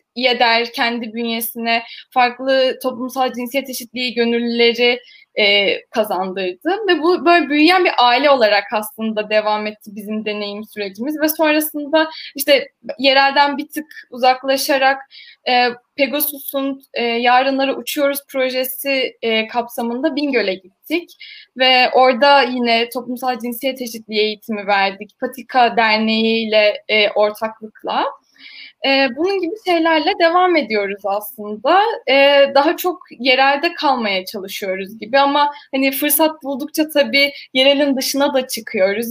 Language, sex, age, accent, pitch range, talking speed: Turkish, female, 10-29, native, 230-285 Hz, 115 wpm